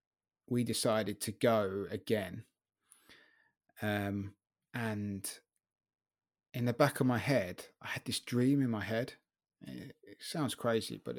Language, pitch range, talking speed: English, 100-125 Hz, 135 wpm